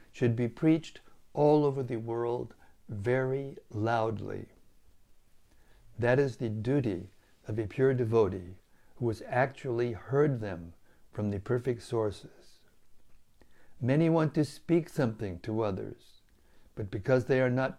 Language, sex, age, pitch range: English, male, 60-79, 105-135 Hz